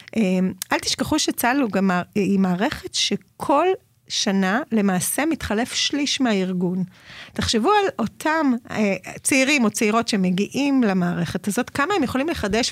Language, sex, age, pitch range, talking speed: Hebrew, female, 30-49, 210-300 Hz, 115 wpm